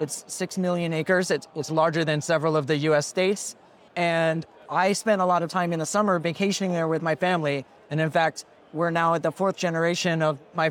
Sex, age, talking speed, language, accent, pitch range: male, 30-49, 220 wpm, English, American, 155-185 Hz